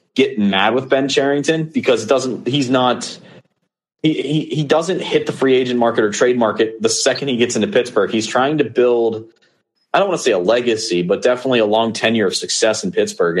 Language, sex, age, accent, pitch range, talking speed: English, male, 30-49, American, 105-130 Hz, 215 wpm